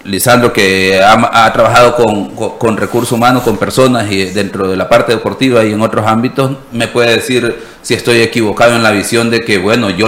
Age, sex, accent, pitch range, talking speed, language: 40-59, male, Venezuelan, 115-165 Hz, 210 wpm, Spanish